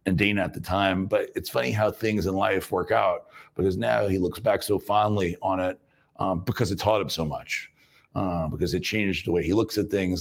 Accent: American